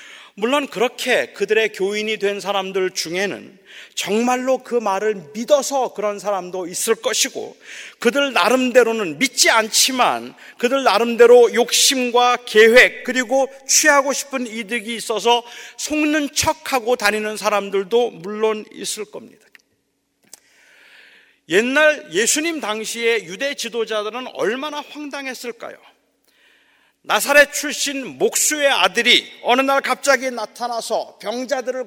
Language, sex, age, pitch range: Korean, male, 40-59, 215-275 Hz